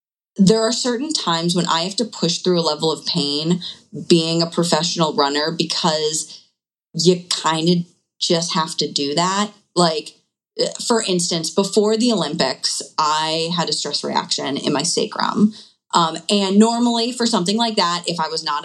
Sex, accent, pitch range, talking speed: female, American, 165-210 Hz, 165 wpm